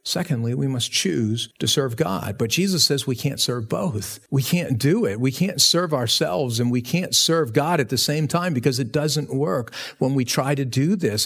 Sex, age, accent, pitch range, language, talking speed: male, 50-69, American, 130-170 Hz, English, 220 wpm